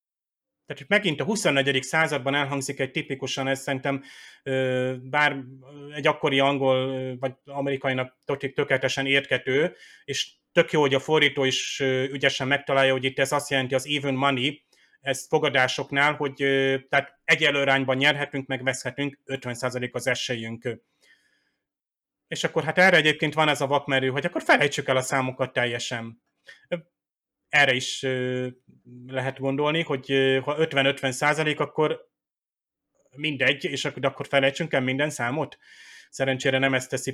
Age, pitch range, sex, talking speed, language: 30-49, 130-150 Hz, male, 135 wpm, Hungarian